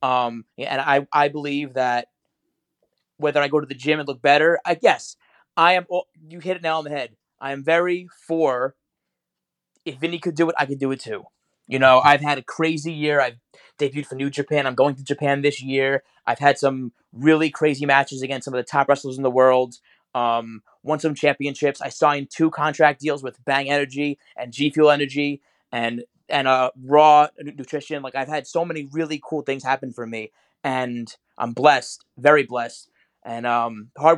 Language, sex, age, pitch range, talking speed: English, male, 20-39, 130-155 Hz, 200 wpm